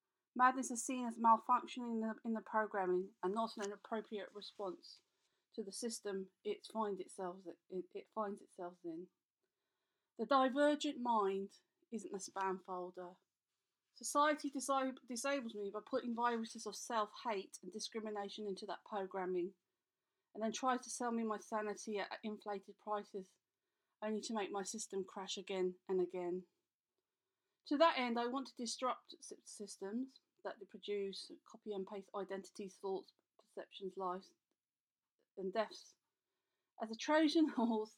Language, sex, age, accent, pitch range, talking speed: English, female, 30-49, British, 195-255 Hz, 135 wpm